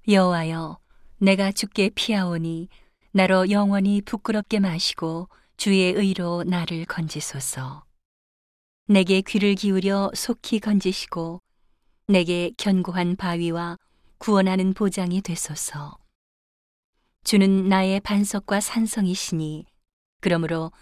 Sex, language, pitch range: female, Korean, 165-200 Hz